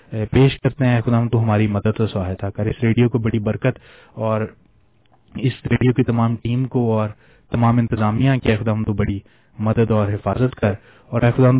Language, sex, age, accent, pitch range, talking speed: English, male, 30-49, Indian, 110-120 Hz, 205 wpm